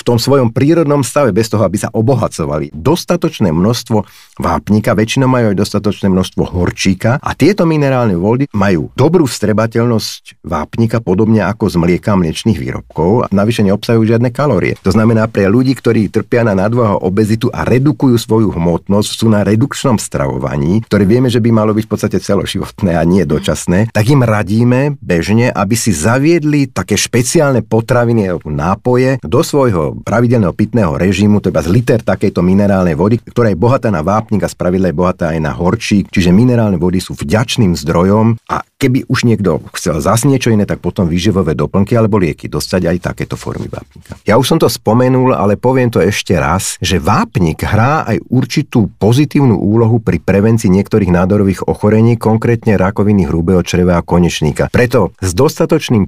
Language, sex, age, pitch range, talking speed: Slovak, male, 50-69, 95-120 Hz, 170 wpm